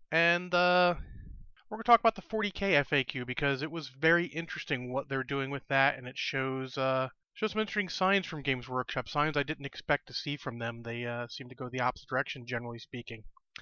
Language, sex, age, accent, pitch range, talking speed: English, male, 30-49, American, 130-160 Hz, 220 wpm